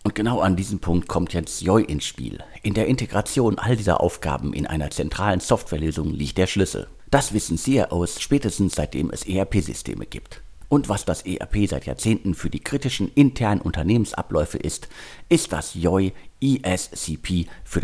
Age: 50-69